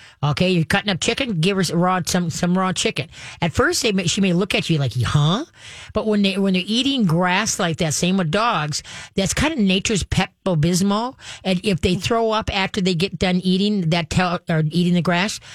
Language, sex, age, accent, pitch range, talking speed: English, female, 40-59, American, 165-195 Hz, 220 wpm